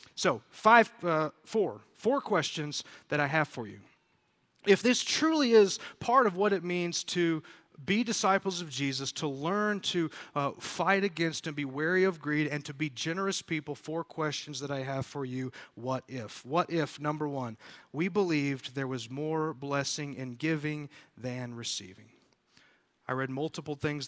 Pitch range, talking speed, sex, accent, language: 135-175 Hz, 165 wpm, male, American, English